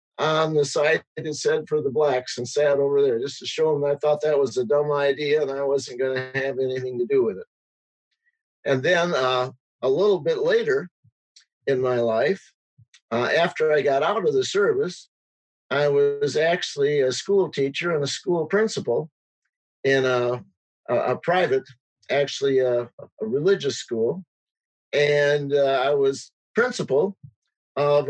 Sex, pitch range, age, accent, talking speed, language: male, 140-205 Hz, 50-69, American, 165 wpm, English